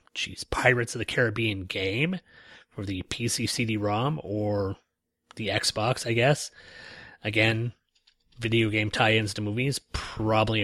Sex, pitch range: male, 100-120 Hz